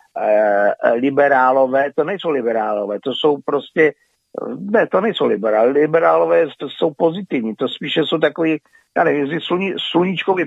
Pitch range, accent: 135-175 Hz, native